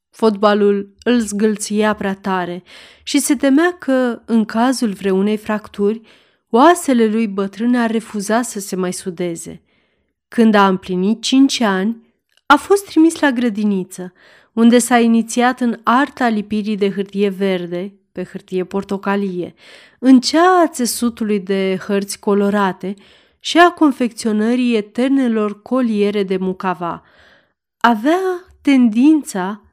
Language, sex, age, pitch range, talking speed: Romanian, female, 30-49, 195-250 Hz, 120 wpm